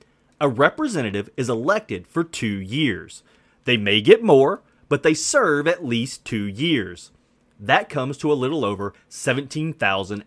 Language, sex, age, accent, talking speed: English, male, 30-49, American, 145 wpm